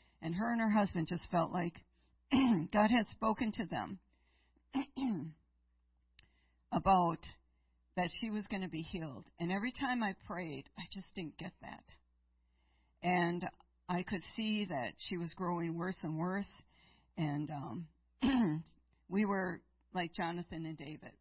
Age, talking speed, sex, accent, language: 50-69, 140 wpm, female, American, English